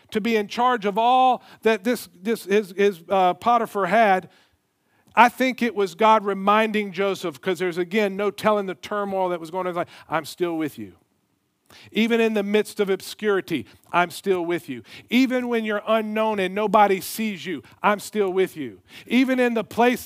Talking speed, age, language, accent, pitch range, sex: 185 wpm, 50-69, English, American, 175-225 Hz, male